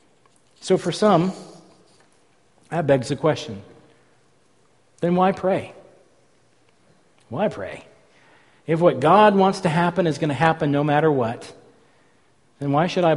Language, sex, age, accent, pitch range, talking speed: English, male, 50-69, American, 145-185 Hz, 130 wpm